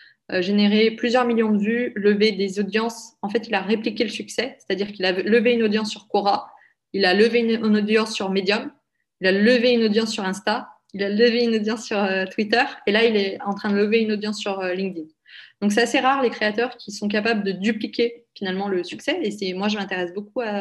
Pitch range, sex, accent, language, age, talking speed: 185-225 Hz, female, French, French, 20-39, 225 wpm